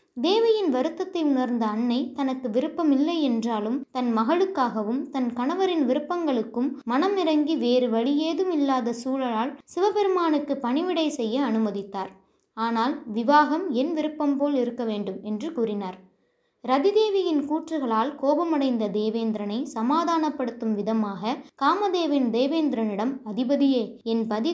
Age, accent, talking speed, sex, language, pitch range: 20-39, native, 100 wpm, female, Tamil, 230-295 Hz